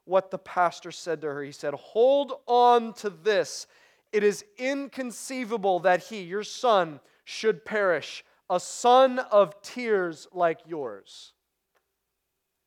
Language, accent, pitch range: English, American, 155-245 Hz